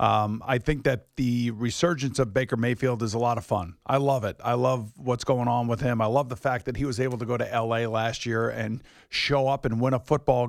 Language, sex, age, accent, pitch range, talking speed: English, male, 50-69, American, 115-145 Hz, 250 wpm